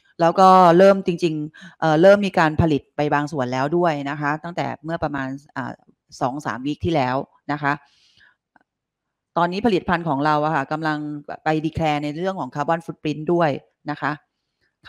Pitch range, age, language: 145-175 Hz, 30-49, Thai